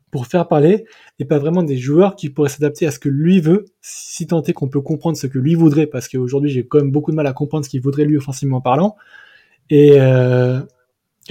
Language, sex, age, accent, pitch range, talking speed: French, male, 20-39, French, 140-175 Hz, 235 wpm